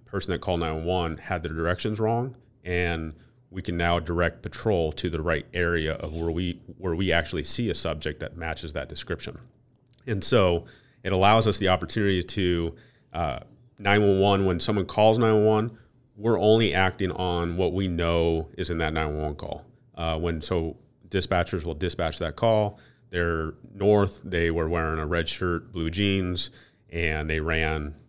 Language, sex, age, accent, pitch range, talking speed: English, male, 30-49, American, 85-100 Hz, 165 wpm